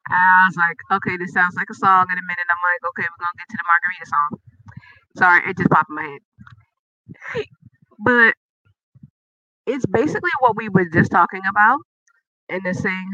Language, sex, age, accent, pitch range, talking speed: English, female, 30-49, American, 170-225 Hz, 190 wpm